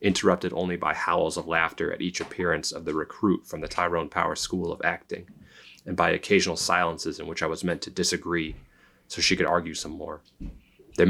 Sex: male